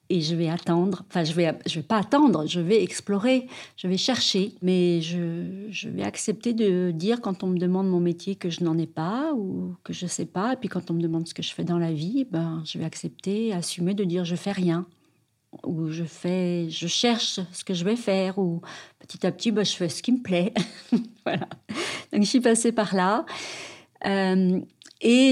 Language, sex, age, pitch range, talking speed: French, female, 40-59, 175-210 Hz, 235 wpm